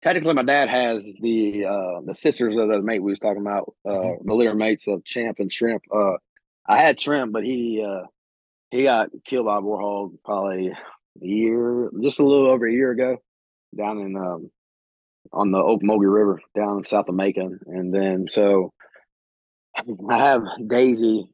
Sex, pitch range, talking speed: male, 95-115 Hz, 175 wpm